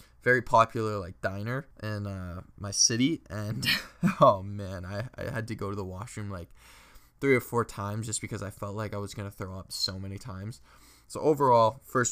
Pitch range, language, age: 100-115 Hz, English, 20-39